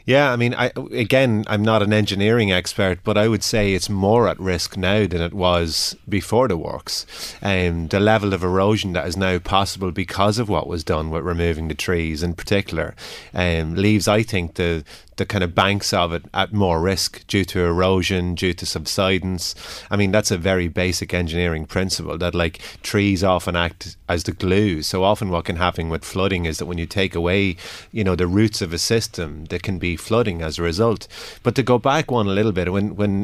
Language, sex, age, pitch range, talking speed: English, male, 30-49, 90-105 Hz, 215 wpm